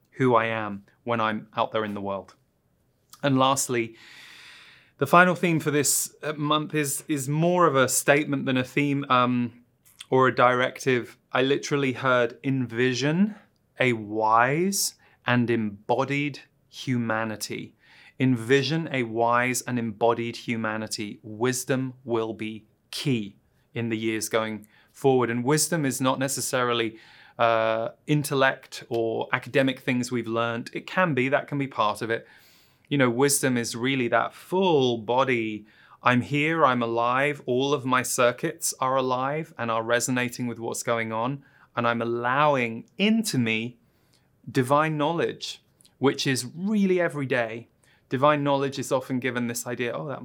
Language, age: English, 30-49